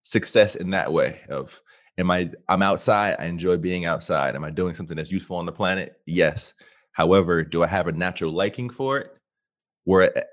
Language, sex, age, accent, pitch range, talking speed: English, male, 30-49, American, 85-110 Hz, 190 wpm